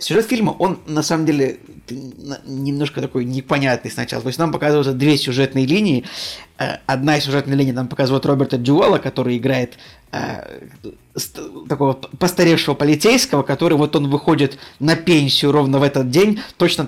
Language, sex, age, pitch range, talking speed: Russian, male, 20-39, 130-155 Hz, 150 wpm